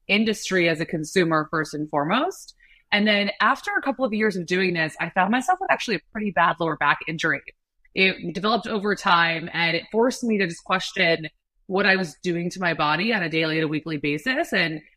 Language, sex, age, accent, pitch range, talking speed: English, female, 20-39, American, 165-215 Hz, 215 wpm